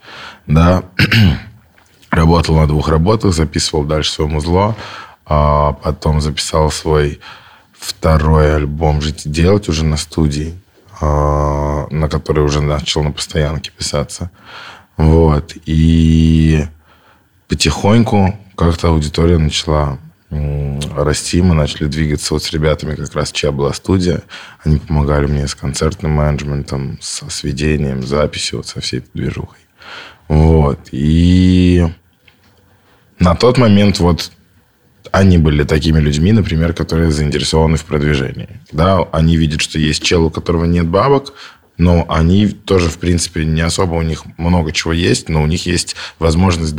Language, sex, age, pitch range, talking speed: Russian, male, 20-39, 75-85 Hz, 130 wpm